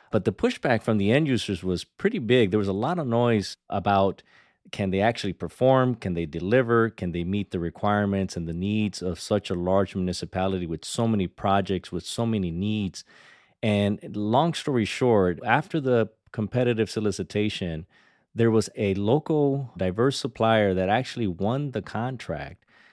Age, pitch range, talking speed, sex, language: 30-49, 95-120 Hz, 165 wpm, male, English